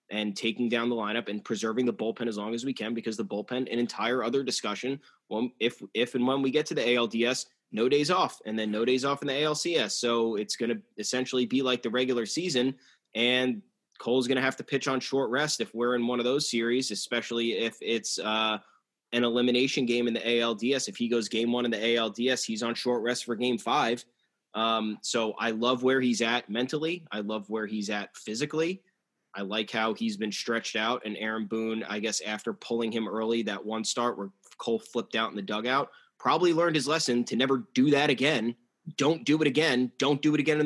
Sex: male